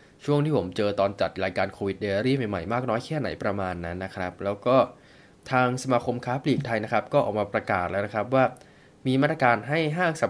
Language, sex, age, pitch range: Thai, male, 20-39, 100-130 Hz